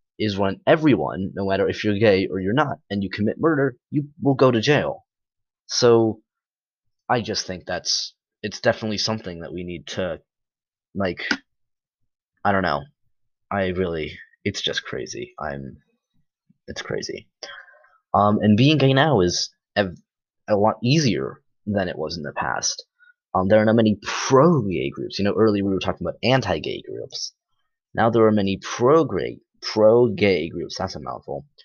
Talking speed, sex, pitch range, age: 165 wpm, male, 95-120 Hz, 20-39